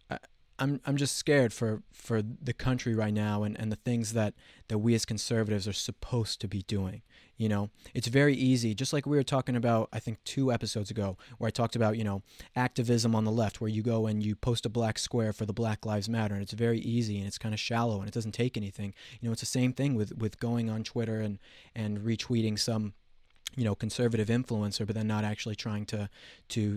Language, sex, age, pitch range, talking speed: English, male, 20-39, 105-120 Hz, 235 wpm